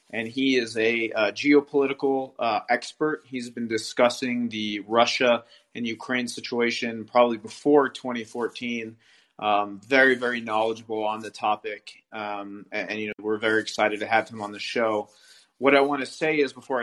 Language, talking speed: English, 170 wpm